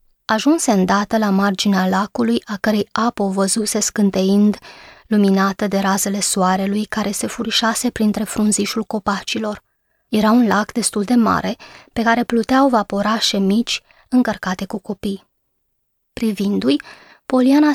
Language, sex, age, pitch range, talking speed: Romanian, female, 20-39, 205-240 Hz, 125 wpm